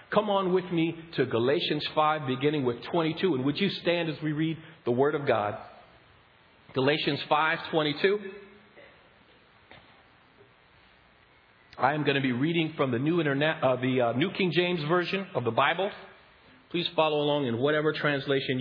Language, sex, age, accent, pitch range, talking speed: English, male, 40-59, American, 120-170 Hz, 160 wpm